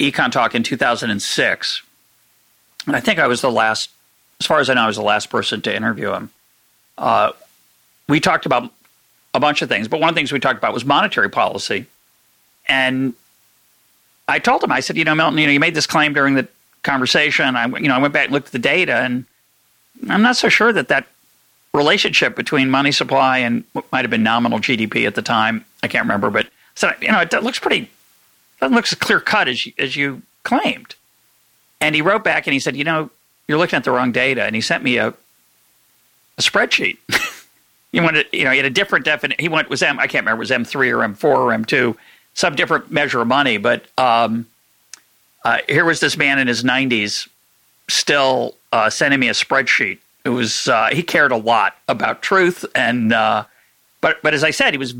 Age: 50-69